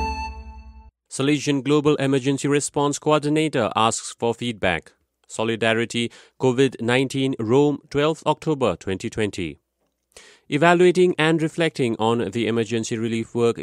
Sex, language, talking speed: male, English, 100 wpm